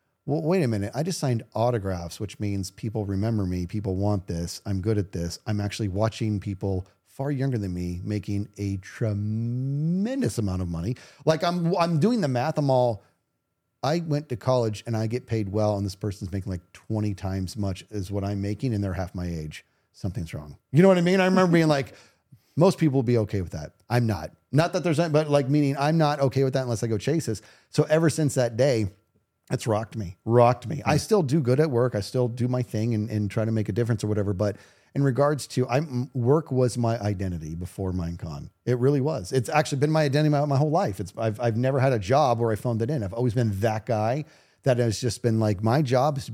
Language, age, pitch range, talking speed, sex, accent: English, 40-59, 105-135 Hz, 240 wpm, male, American